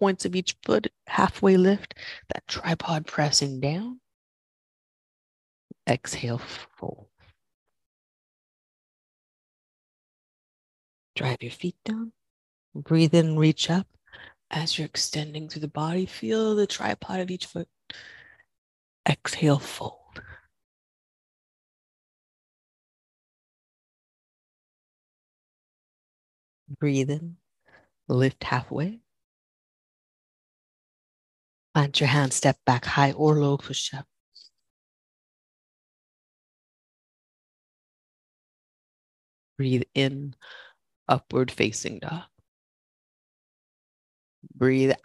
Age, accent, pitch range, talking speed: 30-49, American, 120-170 Hz, 70 wpm